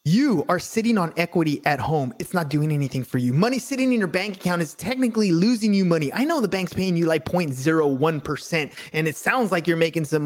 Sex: male